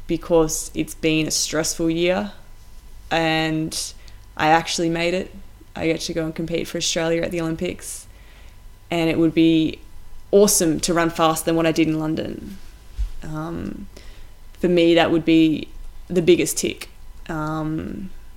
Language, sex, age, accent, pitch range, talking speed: English, female, 20-39, Australian, 110-175 Hz, 150 wpm